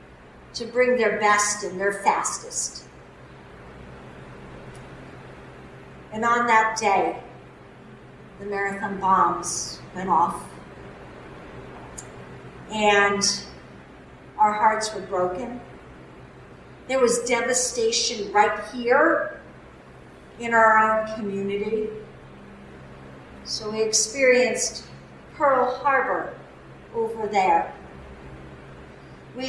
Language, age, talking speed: English, 50-69, 75 wpm